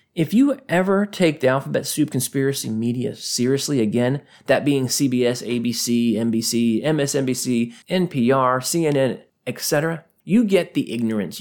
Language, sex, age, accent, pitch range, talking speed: English, male, 30-49, American, 120-180 Hz, 125 wpm